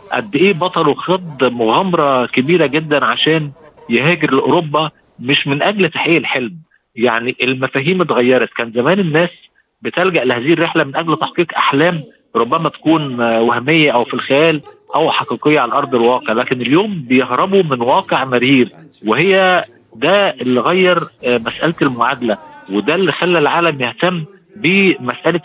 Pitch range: 125-170 Hz